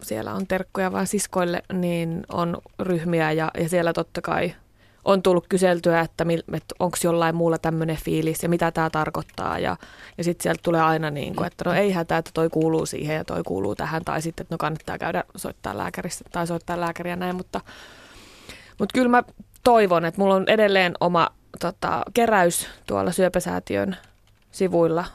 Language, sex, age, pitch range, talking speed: Finnish, female, 20-39, 165-185 Hz, 175 wpm